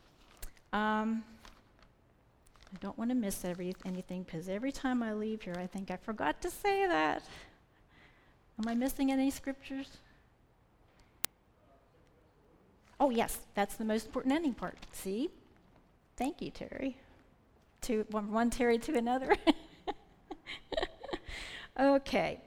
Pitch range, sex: 200-265 Hz, female